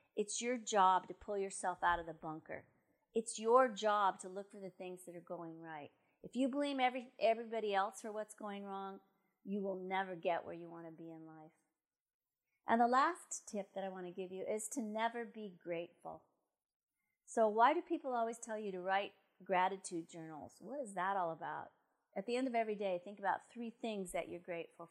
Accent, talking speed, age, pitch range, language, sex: American, 210 wpm, 40-59, 185-255 Hz, English, female